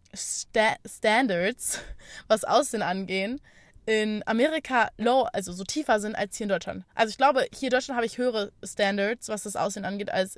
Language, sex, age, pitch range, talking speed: German, female, 20-39, 200-250 Hz, 180 wpm